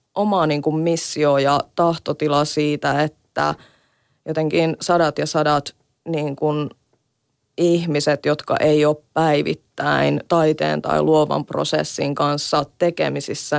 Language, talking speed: Finnish, 95 wpm